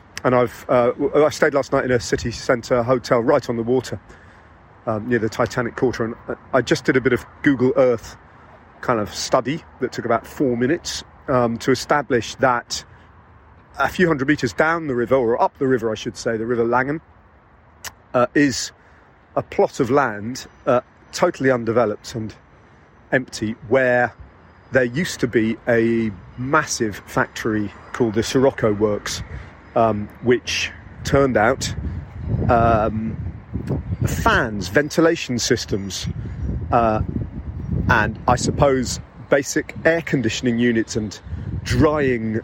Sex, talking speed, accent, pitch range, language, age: male, 140 wpm, British, 110-130 Hz, English, 40-59